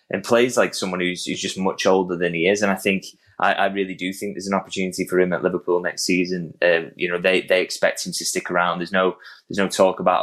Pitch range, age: 85-95 Hz, 10-29